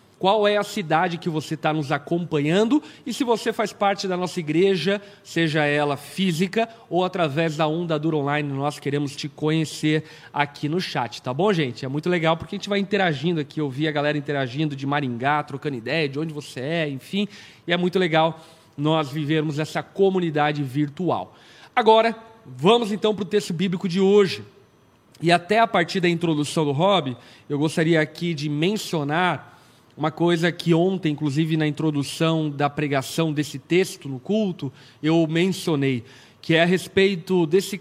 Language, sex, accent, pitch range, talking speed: Portuguese, male, Brazilian, 150-190 Hz, 175 wpm